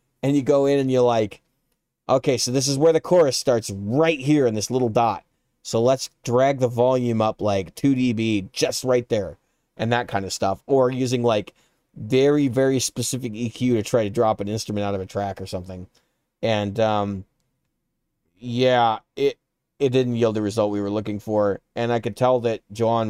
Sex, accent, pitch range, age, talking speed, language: male, American, 105-130 Hz, 30-49, 195 wpm, English